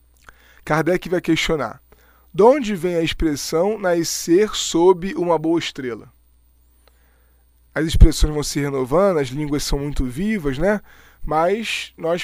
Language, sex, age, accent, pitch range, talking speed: Portuguese, male, 20-39, Brazilian, 140-180 Hz, 125 wpm